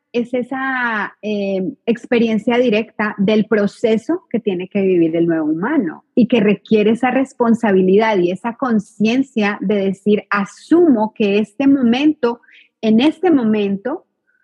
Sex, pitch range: female, 210-260 Hz